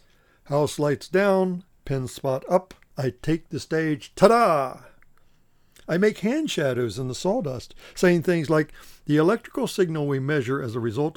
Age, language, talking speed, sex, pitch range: 60-79, English, 155 wpm, male, 120-160 Hz